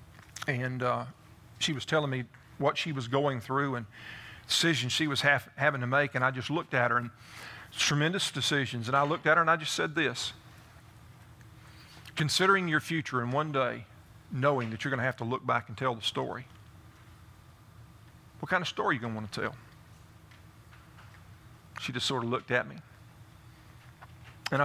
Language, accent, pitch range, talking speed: English, American, 115-145 Hz, 185 wpm